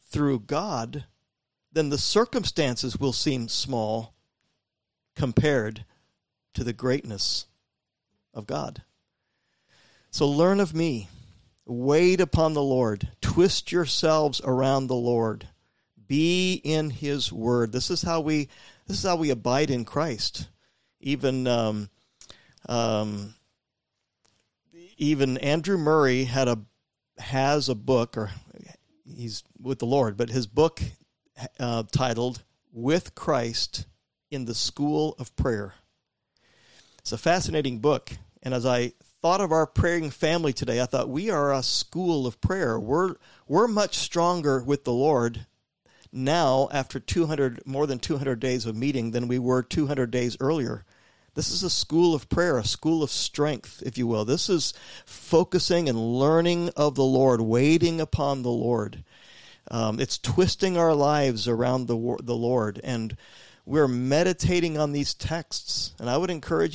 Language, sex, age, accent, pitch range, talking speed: English, male, 50-69, American, 120-150 Hz, 140 wpm